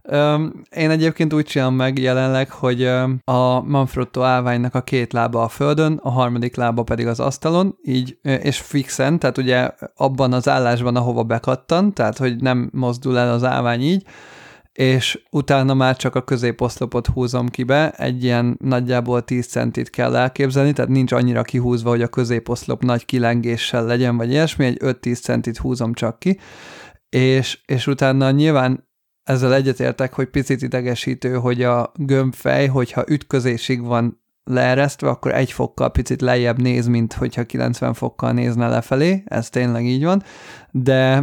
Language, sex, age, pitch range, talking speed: Hungarian, male, 30-49, 120-135 Hz, 155 wpm